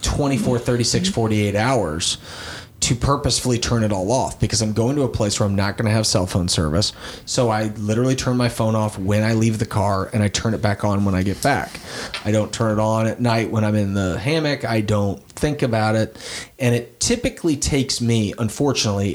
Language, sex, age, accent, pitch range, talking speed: English, male, 30-49, American, 110-125 Hz, 220 wpm